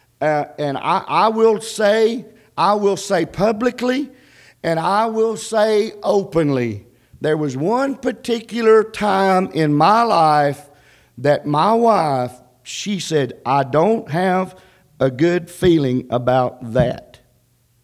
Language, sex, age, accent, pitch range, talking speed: English, male, 50-69, American, 135-220 Hz, 120 wpm